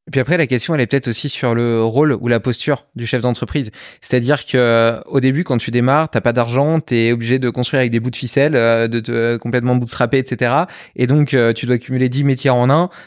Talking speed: 230 wpm